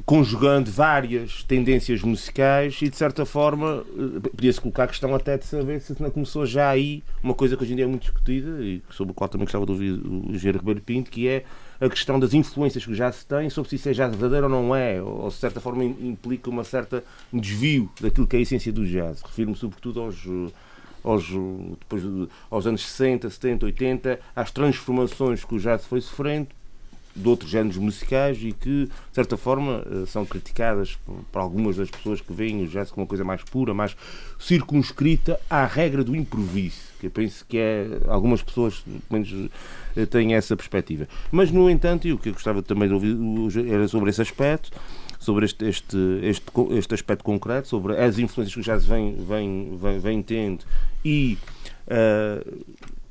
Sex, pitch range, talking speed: male, 105-130 Hz, 190 wpm